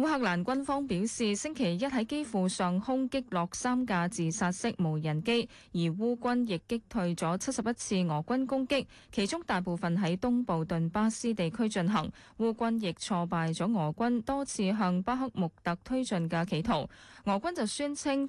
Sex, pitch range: female, 175-235 Hz